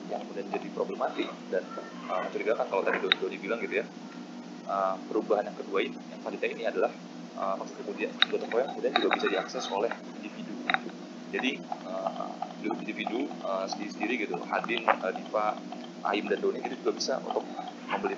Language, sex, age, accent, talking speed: Indonesian, male, 30-49, native, 165 wpm